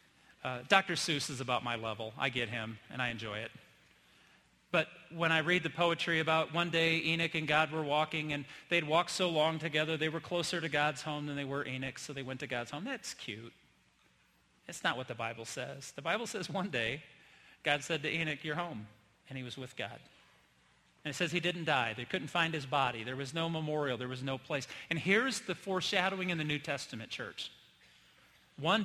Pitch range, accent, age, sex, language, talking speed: 125-170 Hz, American, 40-59, male, English, 215 wpm